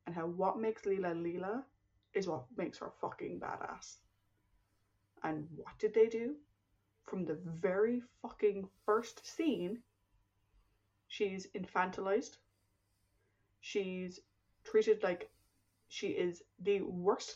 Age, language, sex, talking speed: 20-39, English, female, 110 wpm